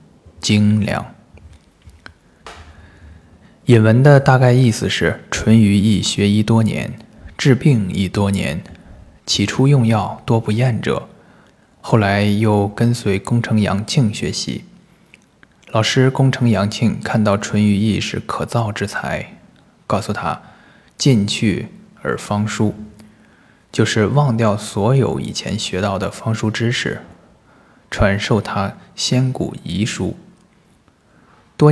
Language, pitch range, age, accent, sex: Chinese, 100-115 Hz, 20-39, native, male